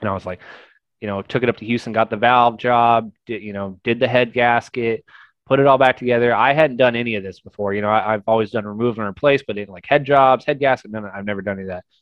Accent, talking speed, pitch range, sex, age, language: American, 285 wpm, 105-130 Hz, male, 20-39, English